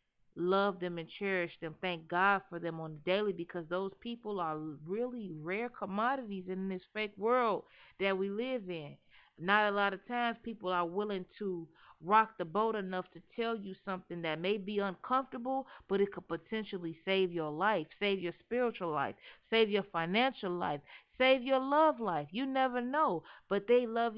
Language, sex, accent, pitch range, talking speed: English, female, American, 175-220 Hz, 180 wpm